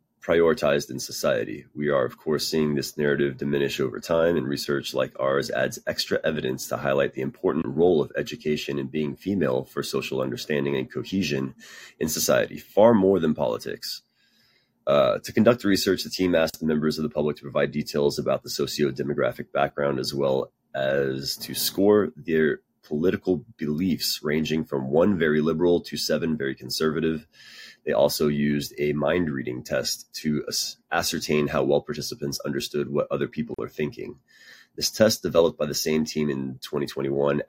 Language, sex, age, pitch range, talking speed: English, male, 30-49, 70-80 Hz, 170 wpm